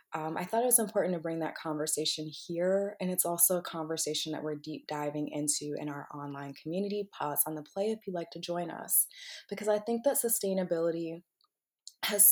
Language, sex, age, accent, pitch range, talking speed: English, female, 20-39, American, 160-200 Hz, 200 wpm